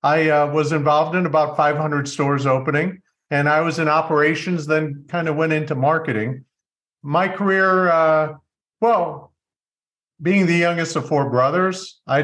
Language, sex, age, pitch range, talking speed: English, male, 50-69, 140-165 Hz, 150 wpm